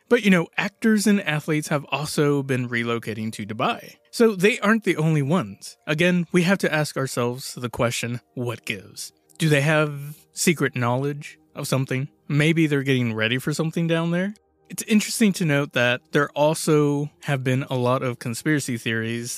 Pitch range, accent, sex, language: 120-160 Hz, American, male, English